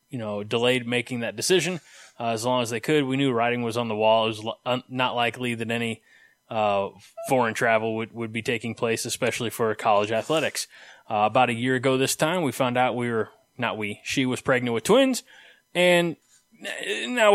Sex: male